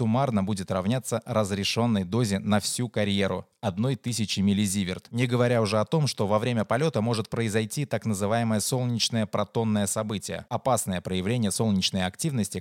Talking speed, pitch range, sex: 150 wpm, 100-125 Hz, male